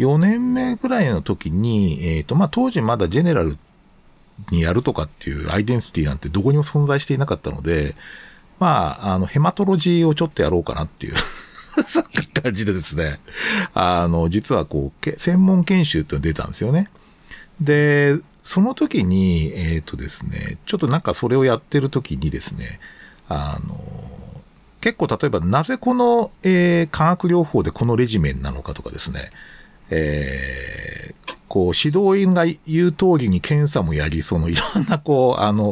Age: 50-69